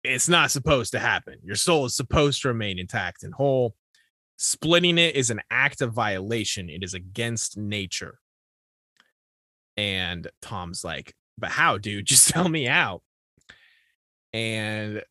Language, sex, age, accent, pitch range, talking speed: English, male, 20-39, American, 100-140 Hz, 145 wpm